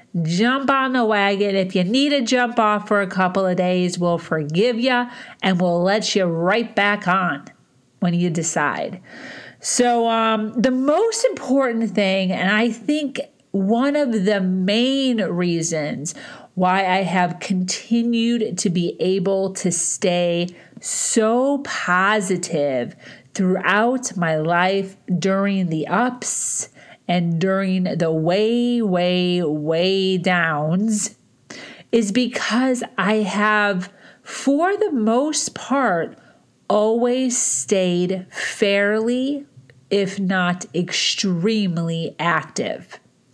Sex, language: female, English